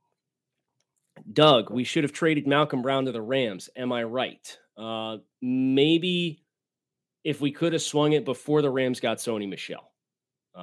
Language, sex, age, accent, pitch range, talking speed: English, male, 30-49, American, 125-150 Hz, 150 wpm